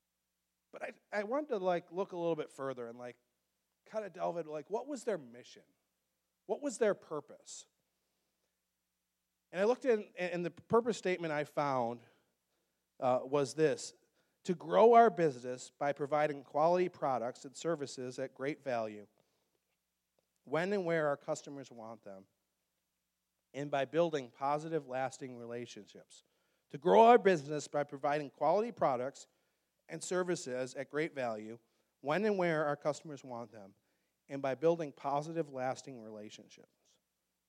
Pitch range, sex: 130-180 Hz, male